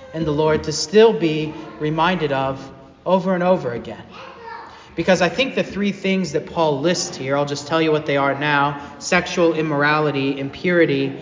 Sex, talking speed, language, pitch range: male, 170 wpm, English, 145-185 Hz